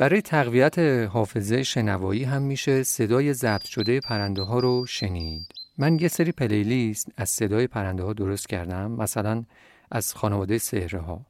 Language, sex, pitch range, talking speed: Persian, male, 105-135 Hz, 145 wpm